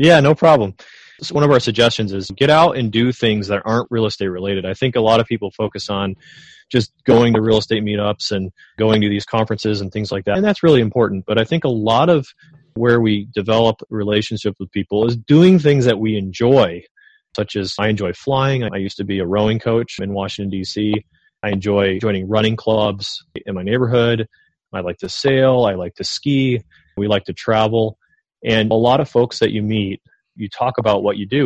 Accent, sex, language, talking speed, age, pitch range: American, male, English, 215 wpm, 30-49, 100-120 Hz